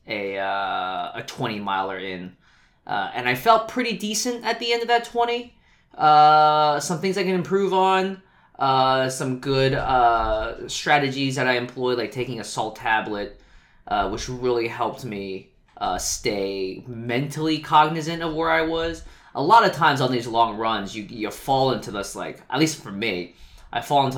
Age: 20-39